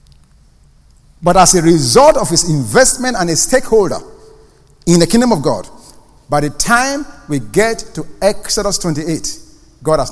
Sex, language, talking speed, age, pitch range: male, English, 150 wpm, 50-69, 145-225 Hz